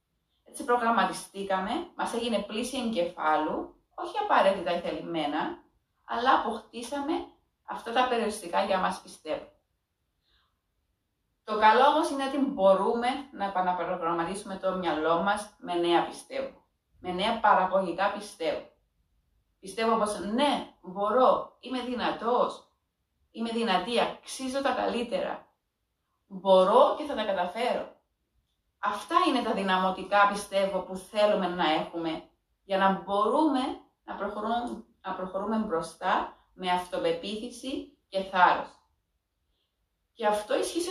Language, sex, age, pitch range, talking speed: Greek, female, 30-49, 180-240 Hz, 115 wpm